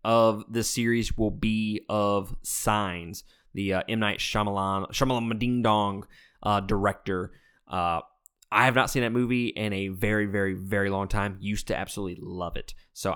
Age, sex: 20-39, male